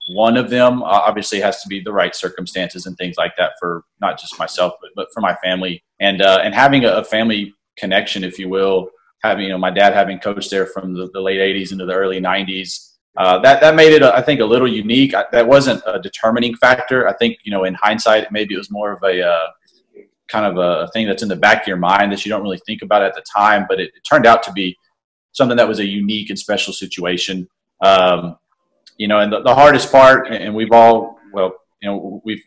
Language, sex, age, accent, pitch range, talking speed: English, male, 30-49, American, 95-110 Hz, 230 wpm